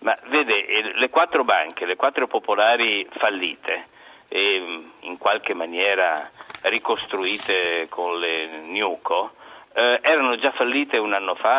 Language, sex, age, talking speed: Italian, male, 50-69, 125 wpm